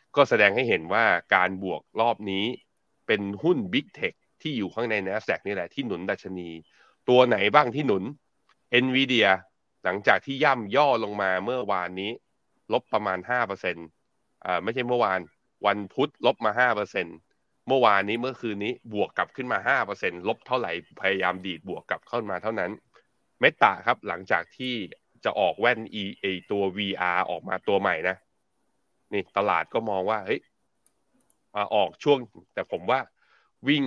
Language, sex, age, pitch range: Thai, male, 20-39, 95-125 Hz